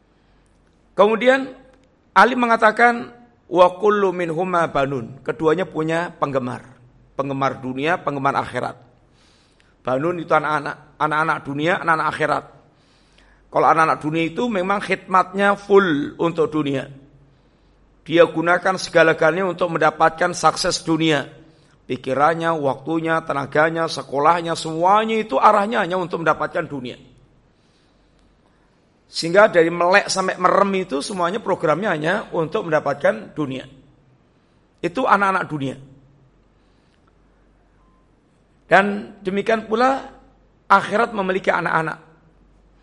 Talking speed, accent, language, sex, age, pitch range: 95 wpm, native, Indonesian, male, 50-69, 145-195 Hz